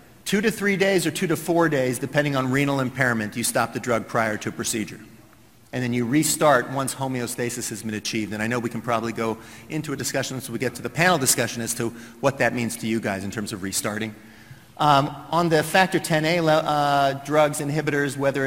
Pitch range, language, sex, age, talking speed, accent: 115-150 Hz, English, male, 50-69, 225 wpm, American